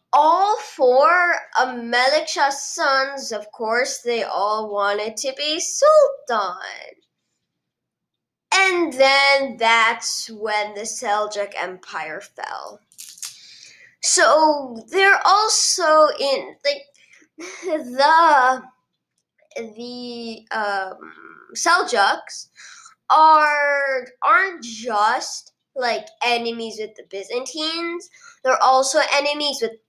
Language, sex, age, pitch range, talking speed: English, female, 10-29, 220-315 Hz, 80 wpm